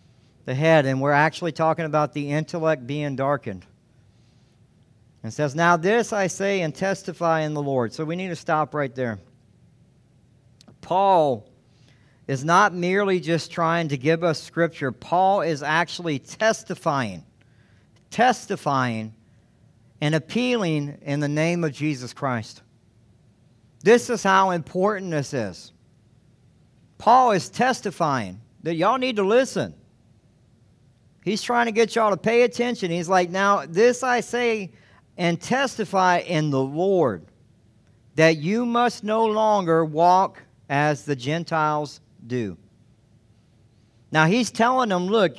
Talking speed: 130 wpm